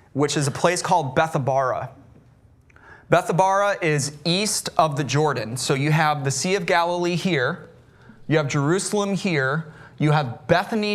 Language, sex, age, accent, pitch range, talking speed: English, male, 30-49, American, 125-175 Hz, 150 wpm